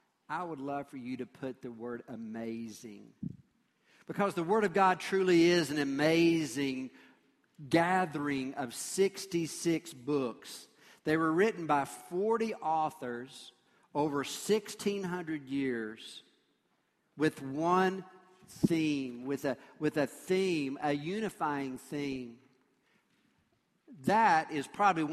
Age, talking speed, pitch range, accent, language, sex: 50-69, 110 wpm, 140-185 Hz, American, English, male